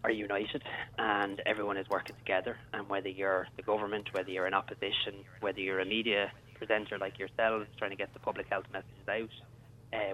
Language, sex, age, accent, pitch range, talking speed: English, male, 30-49, Irish, 100-120 Hz, 190 wpm